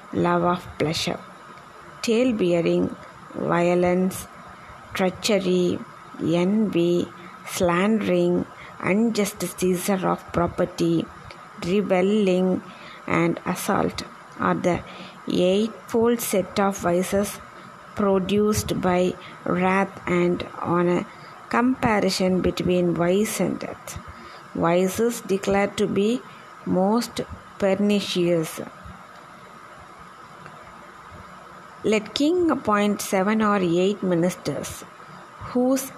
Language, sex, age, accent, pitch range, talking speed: Tamil, female, 20-39, native, 180-215 Hz, 75 wpm